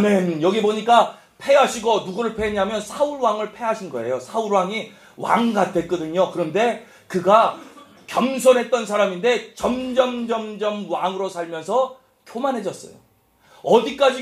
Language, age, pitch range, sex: Korean, 30-49, 140-230 Hz, male